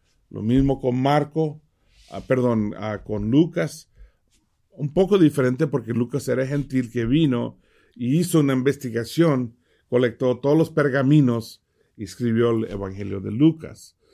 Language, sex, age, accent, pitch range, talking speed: English, male, 50-69, Mexican, 110-140 Hz, 130 wpm